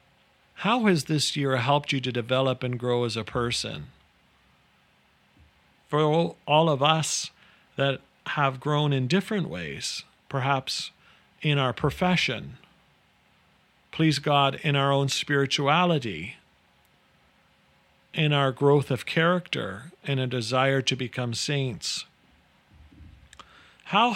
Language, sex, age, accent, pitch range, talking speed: English, male, 40-59, American, 120-155 Hz, 110 wpm